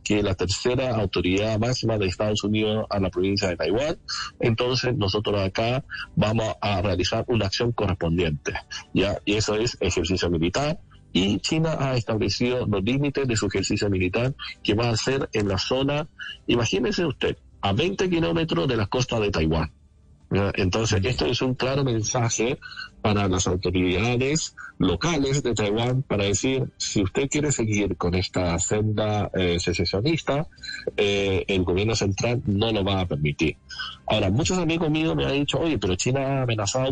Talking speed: 160 wpm